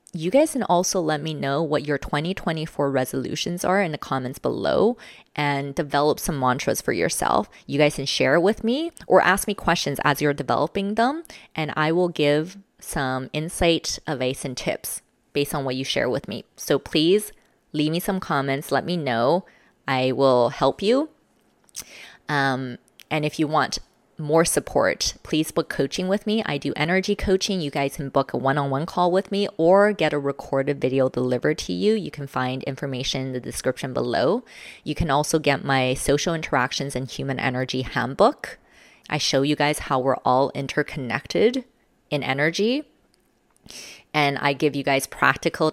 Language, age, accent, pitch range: English, 20-39, American, 135-175 Hz